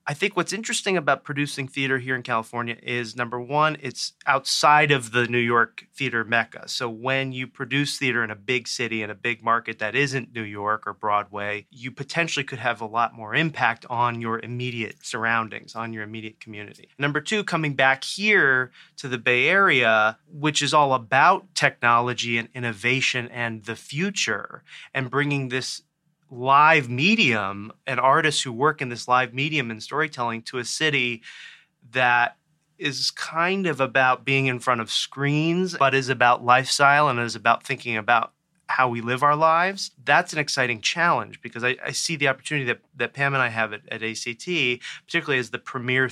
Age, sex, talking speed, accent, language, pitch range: 30-49, male, 180 wpm, American, English, 120-140 Hz